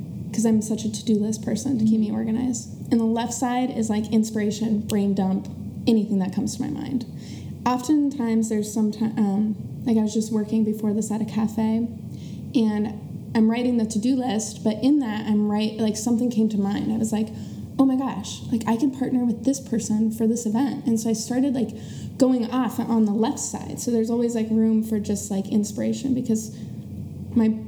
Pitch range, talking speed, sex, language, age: 215-250 Hz, 205 wpm, female, English, 20-39